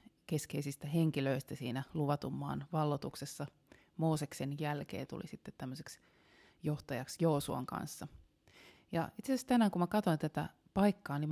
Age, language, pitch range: 30-49, Finnish, 140-175 Hz